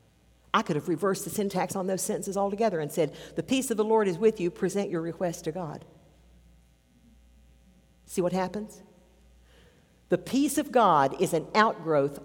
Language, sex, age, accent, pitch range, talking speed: English, female, 60-79, American, 150-185 Hz, 170 wpm